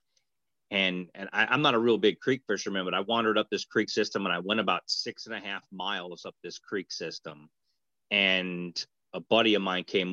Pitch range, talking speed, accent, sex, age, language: 90-105 Hz, 215 wpm, American, male, 30-49, English